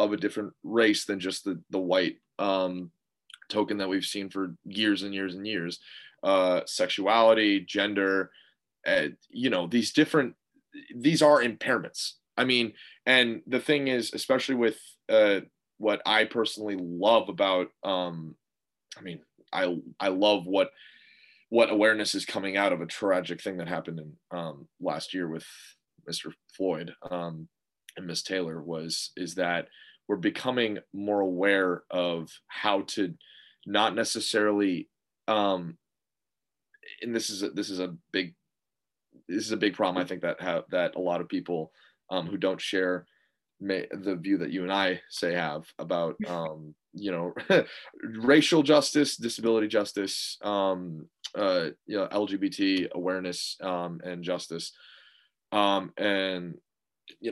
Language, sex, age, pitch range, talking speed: English, male, 20-39, 90-110 Hz, 150 wpm